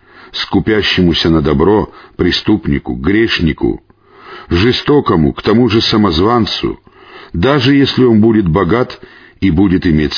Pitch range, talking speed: 90-135 Hz, 105 wpm